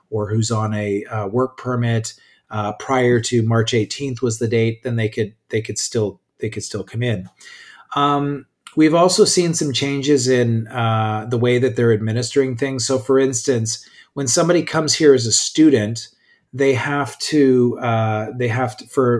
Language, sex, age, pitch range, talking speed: English, male, 30-49, 115-135 Hz, 180 wpm